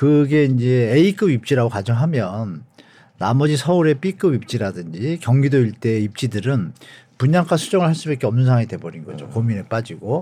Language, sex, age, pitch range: Korean, male, 50-69, 115-155 Hz